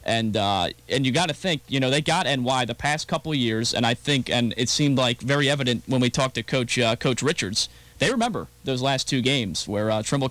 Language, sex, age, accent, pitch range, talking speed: English, male, 20-39, American, 115-135 Hz, 250 wpm